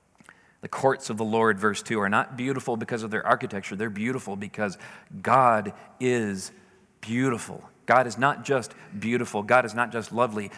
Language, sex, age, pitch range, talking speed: English, male, 40-59, 110-130 Hz, 170 wpm